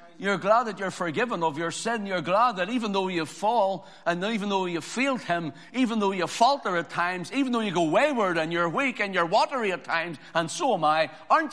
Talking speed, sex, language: 235 wpm, male, English